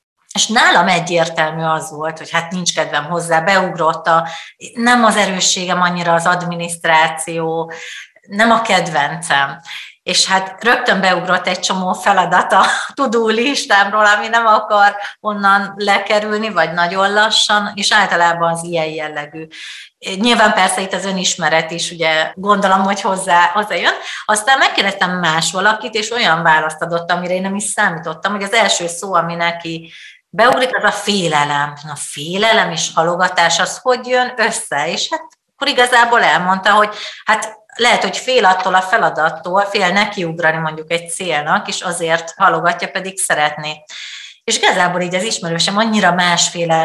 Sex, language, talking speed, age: female, Hungarian, 150 wpm, 30-49